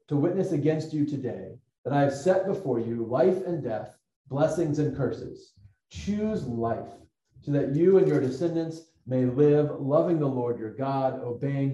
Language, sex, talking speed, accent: English, male, 170 wpm, American